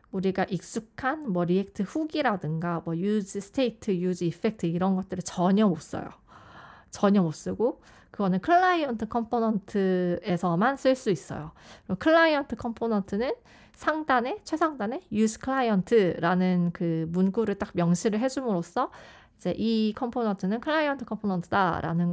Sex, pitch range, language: female, 175-245 Hz, Korean